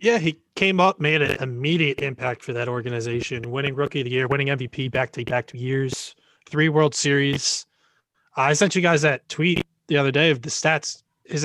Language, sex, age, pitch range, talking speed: English, male, 20-39, 130-155 Hz, 210 wpm